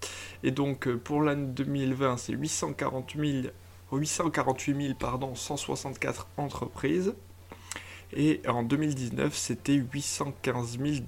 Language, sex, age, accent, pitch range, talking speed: French, male, 20-39, French, 115-150 Hz, 95 wpm